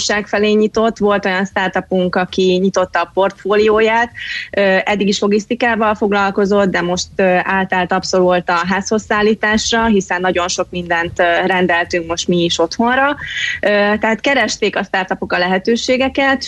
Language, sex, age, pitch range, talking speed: Hungarian, female, 20-39, 180-210 Hz, 125 wpm